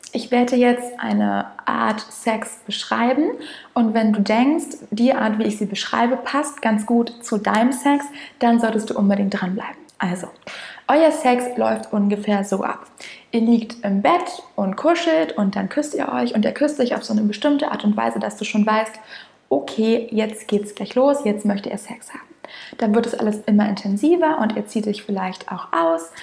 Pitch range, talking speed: 205-255 Hz, 195 wpm